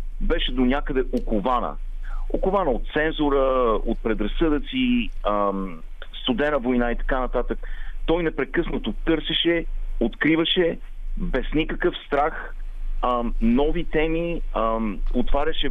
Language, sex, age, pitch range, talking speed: Bulgarian, male, 40-59, 115-155 Hz, 90 wpm